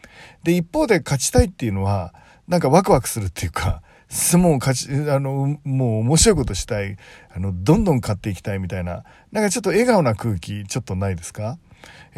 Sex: male